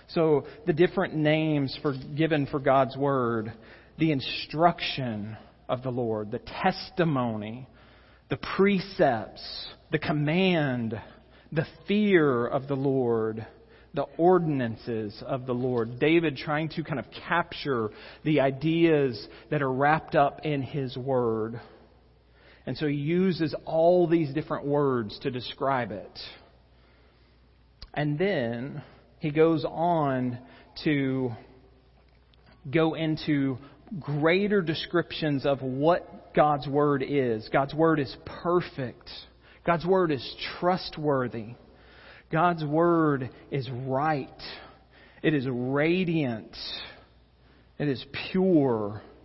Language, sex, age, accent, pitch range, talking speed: English, male, 40-59, American, 115-160 Hz, 110 wpm